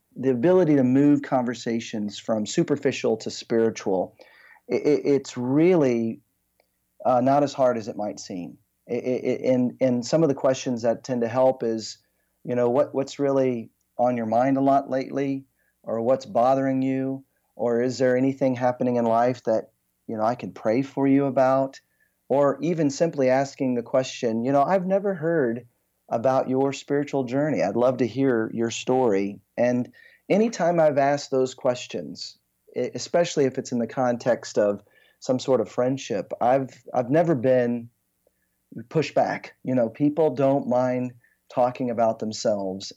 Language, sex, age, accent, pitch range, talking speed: English, male, 40-59, American, 120-135 Hz, 155 wpm